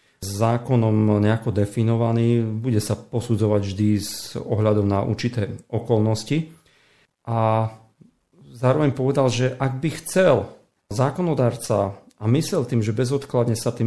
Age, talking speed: 40-59, 120 wpm